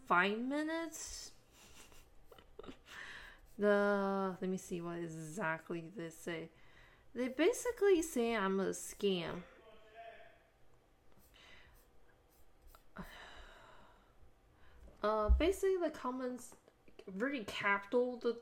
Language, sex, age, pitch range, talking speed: English, female, 10-29, 195-245 Hz, 75 wpm